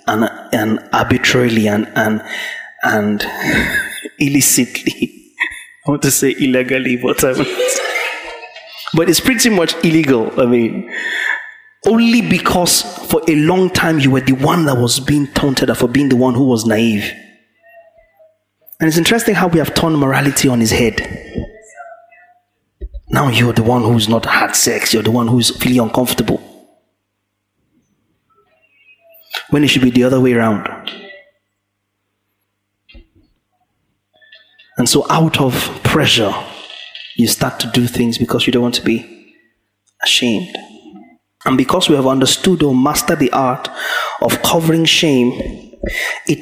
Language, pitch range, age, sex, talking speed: English, 120-185 Hz, 30-49, male, 135 wpm